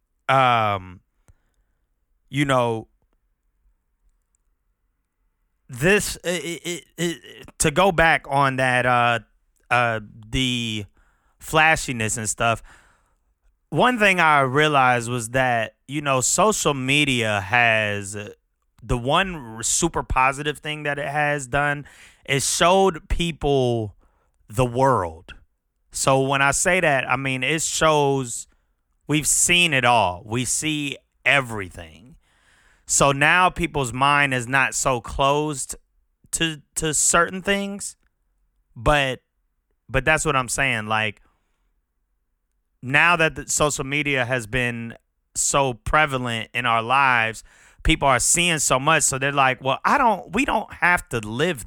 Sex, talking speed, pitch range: male, 125 wpm, 110-150 Hz